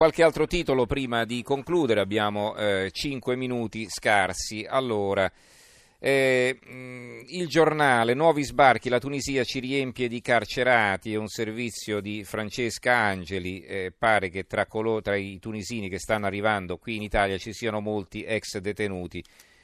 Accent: native